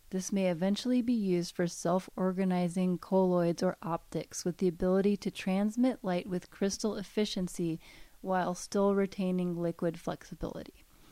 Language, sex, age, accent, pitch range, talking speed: English, female, 30-49, American, 180-215 Hz, 130 wpm